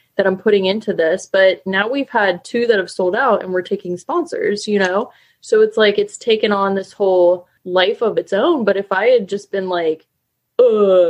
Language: English